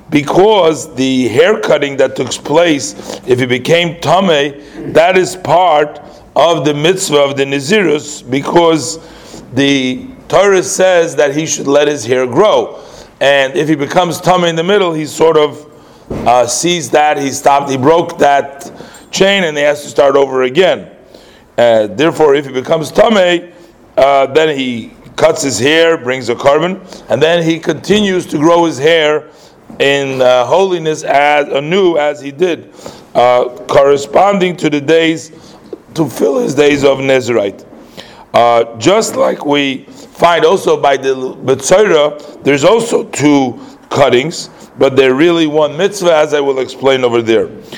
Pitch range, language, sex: 135-165 Hz, English, male